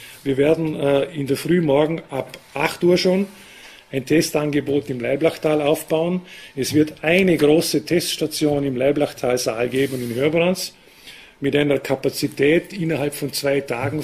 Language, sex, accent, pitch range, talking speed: German, male, Austrian, 130-160 Hz, 140 wpm